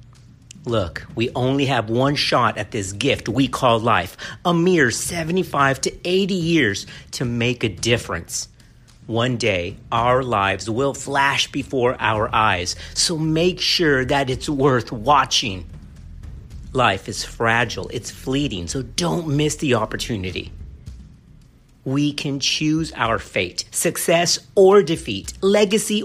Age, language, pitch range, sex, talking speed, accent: 50-69, English, 110-170 Hz, male, 130 wpm, American